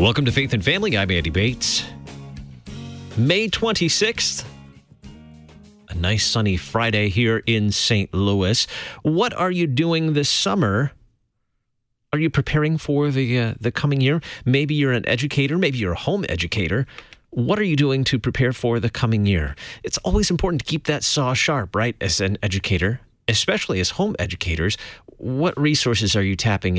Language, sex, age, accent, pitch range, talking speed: English, male, 30-49, American, 95-130 Hz, 165 wpm